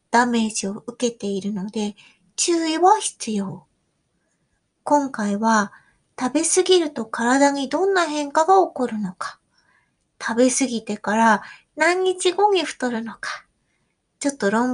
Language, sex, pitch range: Japanese, female, 225-310 Hz